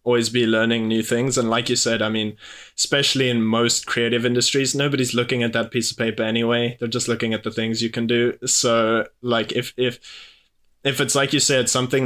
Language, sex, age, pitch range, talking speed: English, male, 20-39, 110-125 Hz, 215 wpm